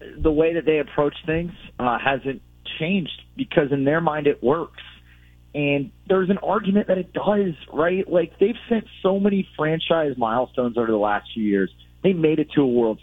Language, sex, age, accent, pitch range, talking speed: English, male, 30-49, American, 105-155 Hz, 190 wpm